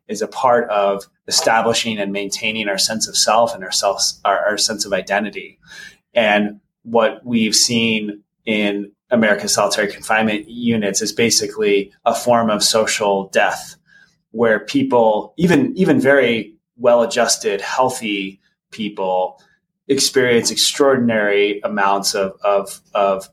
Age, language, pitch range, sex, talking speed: 30-49, English, 100-120 Hz, male, 125 wpm